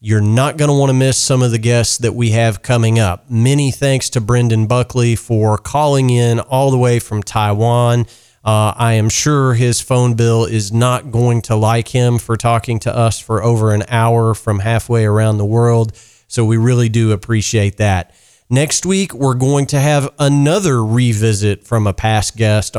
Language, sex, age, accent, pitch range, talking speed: English, male, 40-59, American, 105-125 Hz, 190 wpm